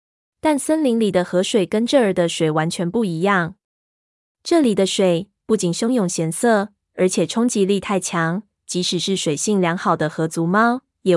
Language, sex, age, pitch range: Chinese, female, 20-39, 175-215 Hz